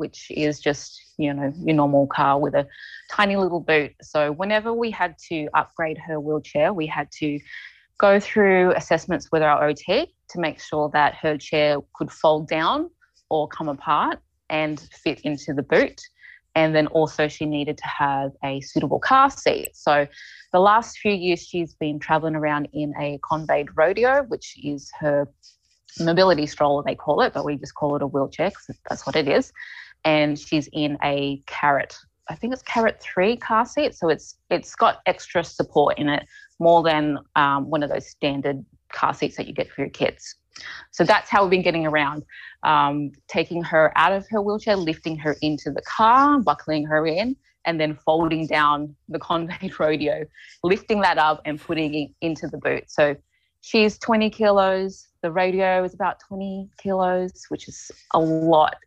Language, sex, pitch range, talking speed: English, female, 150-190 Hz, 180 wpm